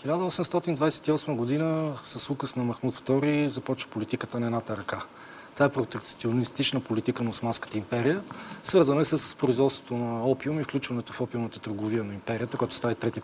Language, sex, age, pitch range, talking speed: Bulgarian, male, 40-59, 115-145 Hz, 160 wpm